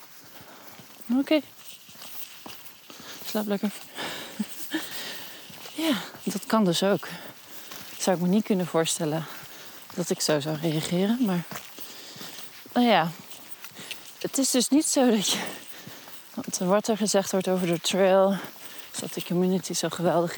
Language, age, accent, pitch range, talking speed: Dutch, 30-49, Dutch, 170-205 Hz, 135 wpm